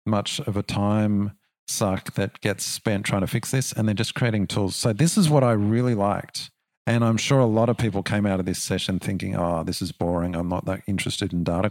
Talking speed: 240 wpm